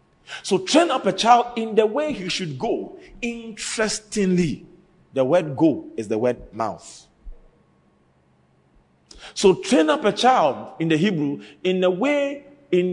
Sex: male